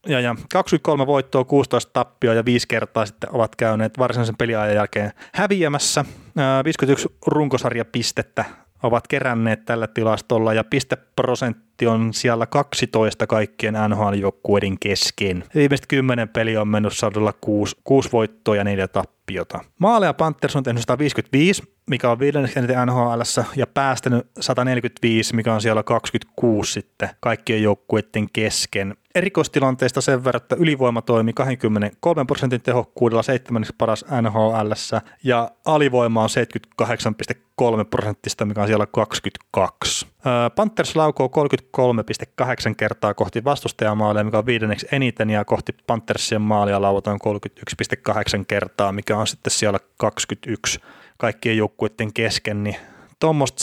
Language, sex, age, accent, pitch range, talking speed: Finnish, male, 20-39, native, 110-130 Hz, 125 wpm